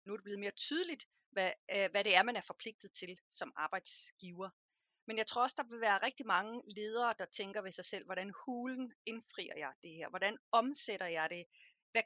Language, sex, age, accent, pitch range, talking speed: Danish, female, 30-49, native, 195-250 Hz, 210 wpm